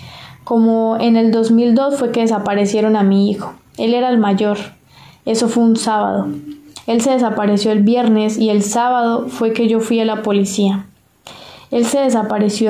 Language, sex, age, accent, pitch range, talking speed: Spanish, female, 10-29, Colombian, 205-230 Hz, 170 wpm